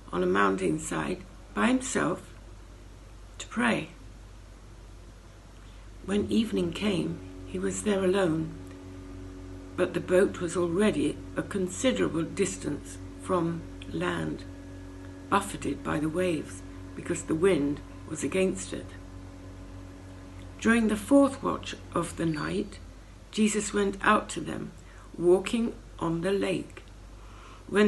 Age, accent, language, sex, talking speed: 60-79, British, English, female, 110 wpm